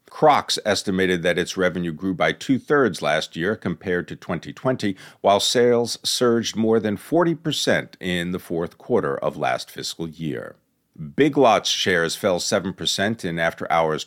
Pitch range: 90-120 Hz